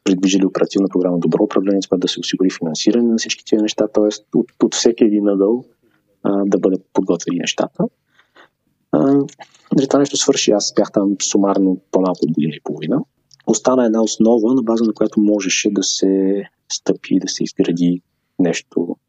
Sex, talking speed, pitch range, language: male, 160 wpm, 95-115 Hz, Bulgarian